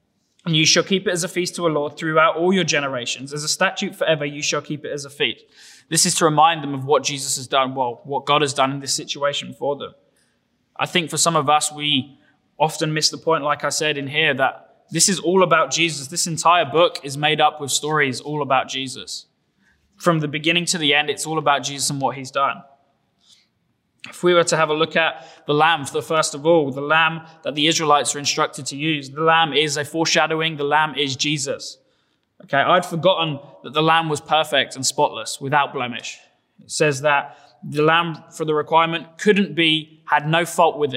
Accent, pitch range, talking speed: British, 145-165 Hz, 225 wpm